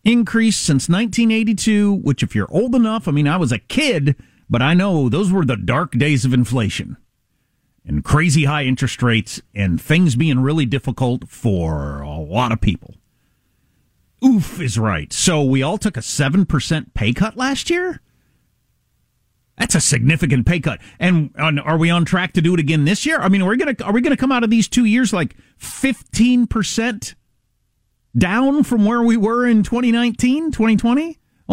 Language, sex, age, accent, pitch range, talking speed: English, male, 40-59, American, 130-215 Hz, 170 wpm